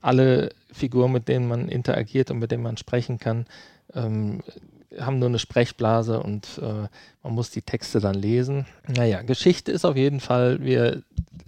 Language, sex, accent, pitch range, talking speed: German, male, German, 115-140 Hz, 165 wpm